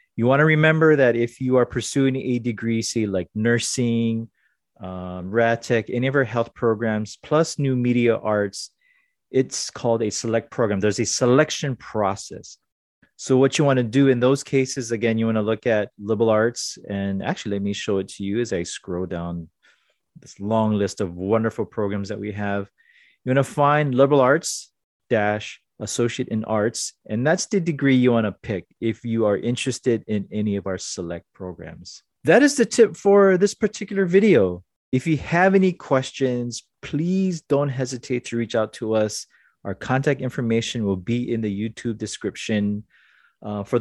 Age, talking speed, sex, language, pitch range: 30-49, 180 wpm, male, English, 105-135 Hz